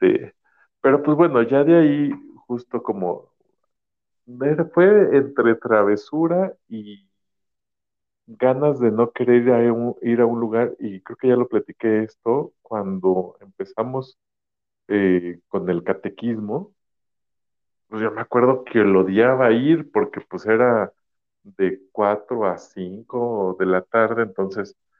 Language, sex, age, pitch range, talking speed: Spanish, male, 50-69, 100-155 Hz, 125 wpm